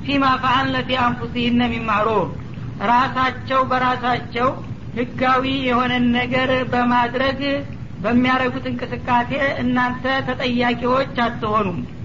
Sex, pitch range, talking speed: female, 235-255 Hz, 75 wpm